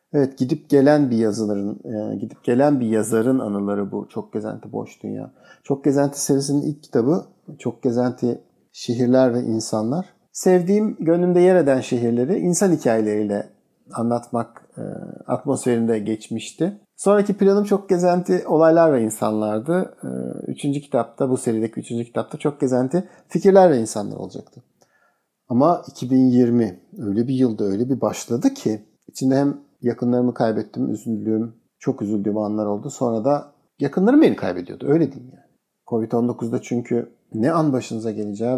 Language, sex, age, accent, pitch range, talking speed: Turkish, male, 50-69, native, 115-160 Hz, 135 wpm